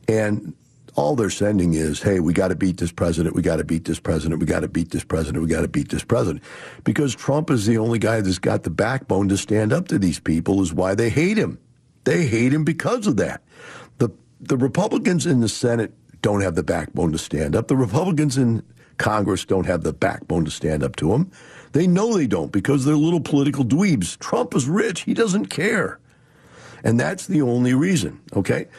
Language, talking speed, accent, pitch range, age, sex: English, 215 wpm, American, 105-150 Hz, 60-79, male